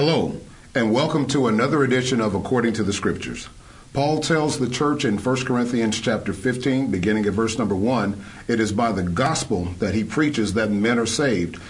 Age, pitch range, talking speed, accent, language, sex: 50-69, 105-140 Hz, 190 wpm, American, English, male